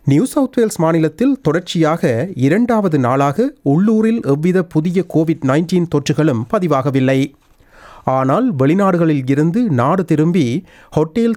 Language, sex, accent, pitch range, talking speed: Tamil, male, native, 135-185 Hz, 100 wpm